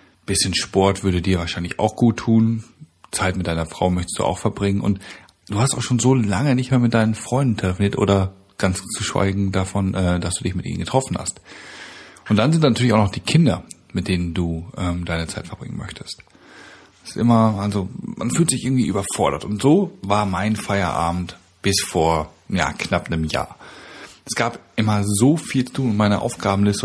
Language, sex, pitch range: German, male, 95-120 Hz